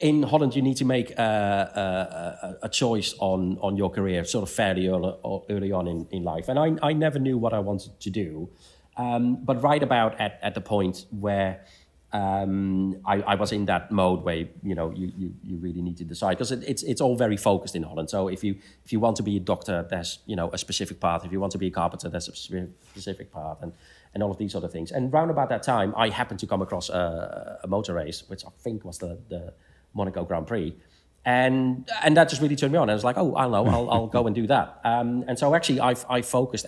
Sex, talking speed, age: male, 250 wpm, 30-49